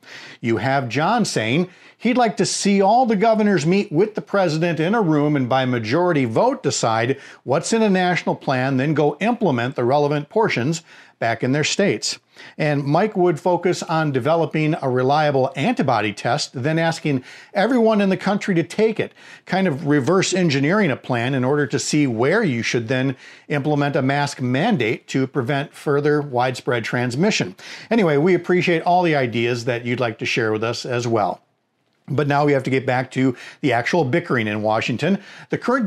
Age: 50-69